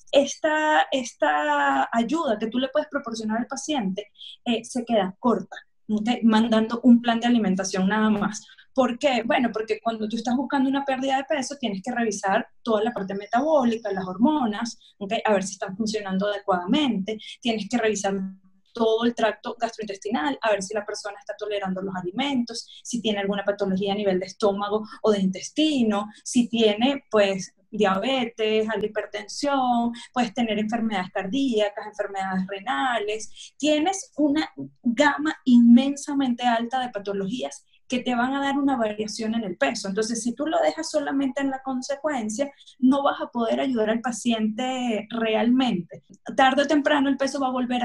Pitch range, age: 210-260 Hz, 10-29